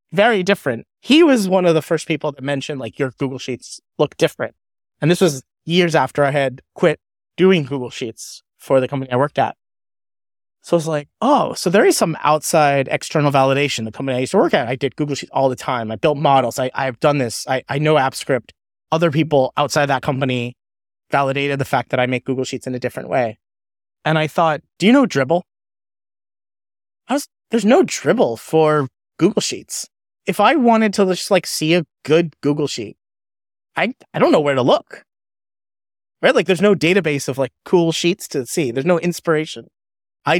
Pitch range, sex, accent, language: 130-170 Hz, male, American, English